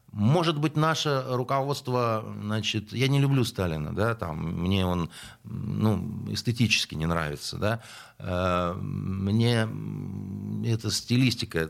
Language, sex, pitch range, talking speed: Russian, male, 90-125 Hz, 115 wpm